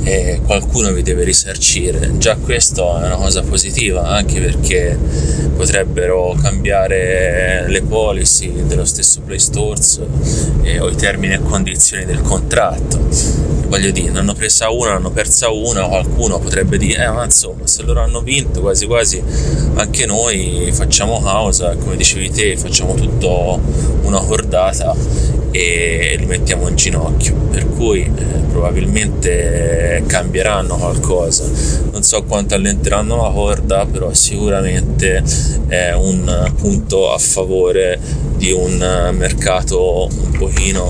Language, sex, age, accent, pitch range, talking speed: Italian, male, 20-39, native, 70-95 Hz, 135 wpm